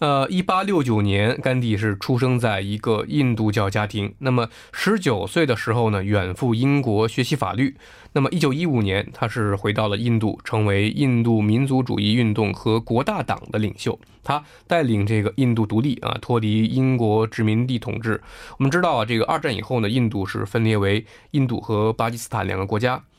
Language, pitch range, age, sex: Korean, 105-135 Hz, 20-39, male